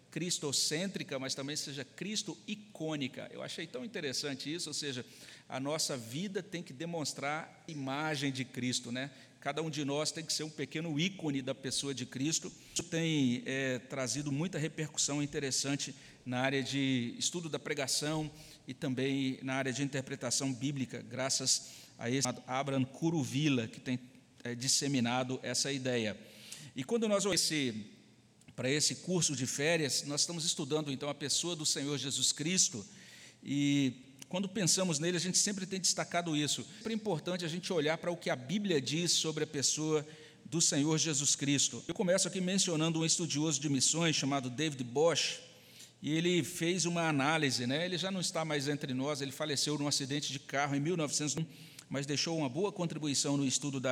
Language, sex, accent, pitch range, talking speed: Portuguese, male, Brazilian, 135-165 Hz, 175 wpm